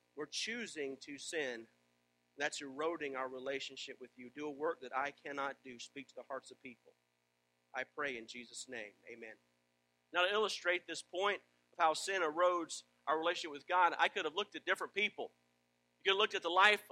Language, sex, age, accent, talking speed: English, male, 40-59, American, 200 wpm